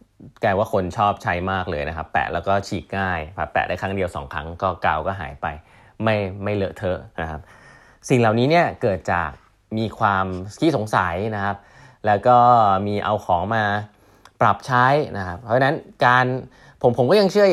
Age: 20-39